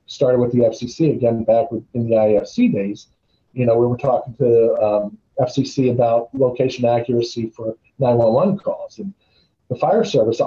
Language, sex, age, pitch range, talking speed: English, male, 40-59, 110-140 Hz, 160 wpm